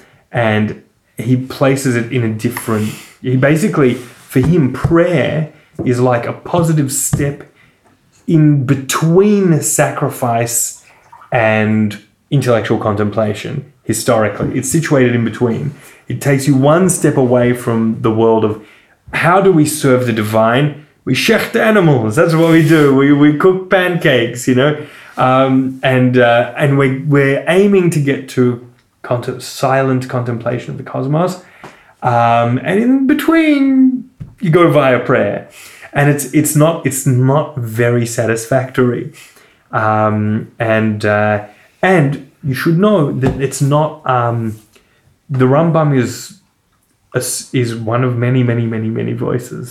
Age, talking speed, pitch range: 20-39, 135 wpm, 115-150 Hz